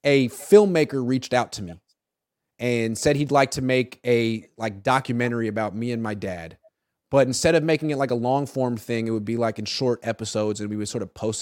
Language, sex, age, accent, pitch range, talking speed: English, male, 30-49, American, 110-145 Hz, 225 wpm